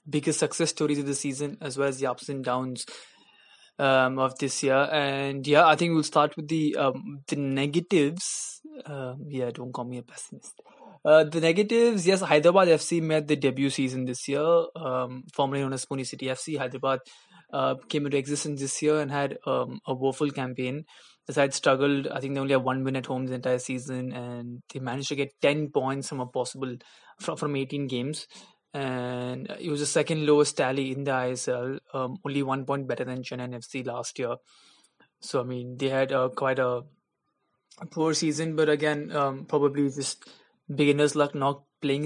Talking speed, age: 195 wpm, 20-39